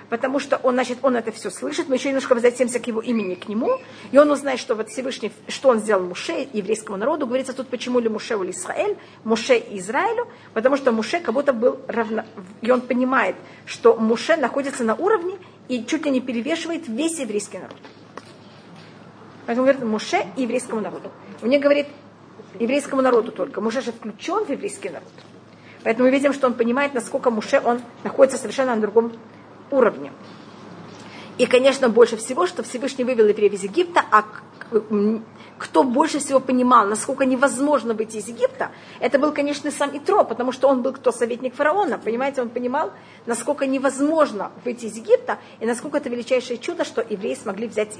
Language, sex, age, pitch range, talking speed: Russian, female, 40-59, 225-280 Hz, 180 wpm